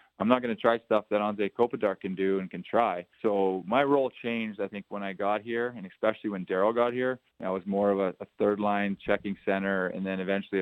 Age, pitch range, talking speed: 20-39, 95-115 Hz, 235 wpm